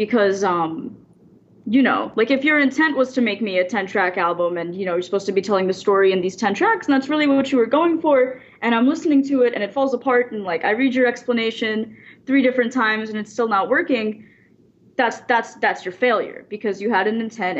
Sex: female